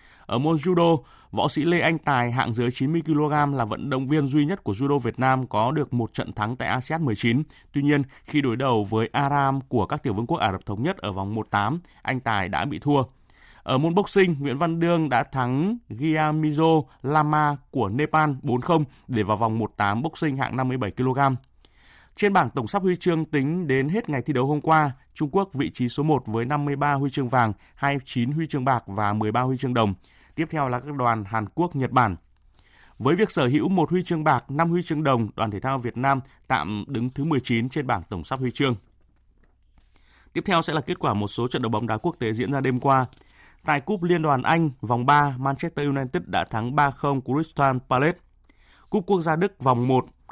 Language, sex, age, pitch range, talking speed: Vietnamese, male, 20-39, 120-155 Hz, 215 wpm